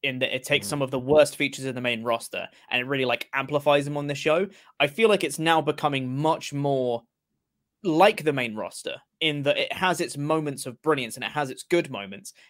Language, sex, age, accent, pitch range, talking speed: English, male, 20-39, British, 130-155 Hz, 230 wpm